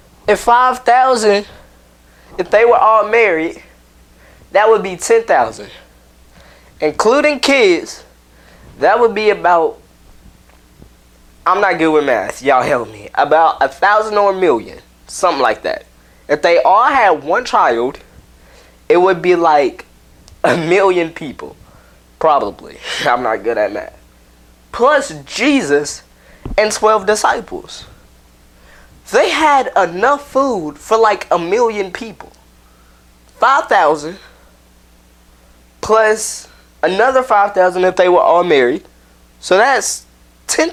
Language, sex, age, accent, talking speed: English, male, 10-29, American, 120 wpm